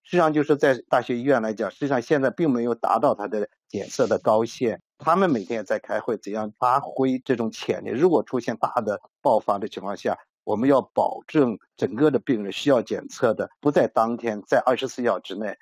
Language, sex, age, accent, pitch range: Chinese, male, 50-69, native, 110-145 Hz